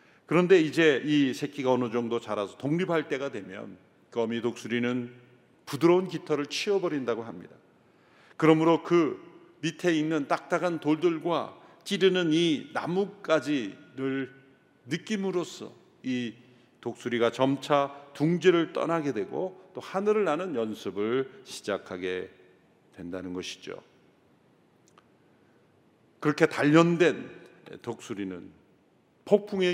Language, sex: Korean, male